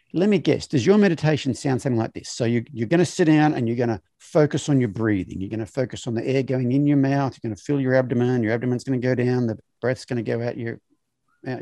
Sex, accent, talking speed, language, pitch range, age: male, Australian, 290 wpm, English, 120-150 Hz, 50-69